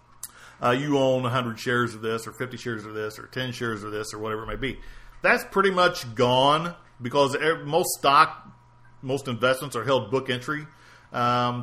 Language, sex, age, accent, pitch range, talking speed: English, male, 40-59, American, 115-140 Hz, 185 wpm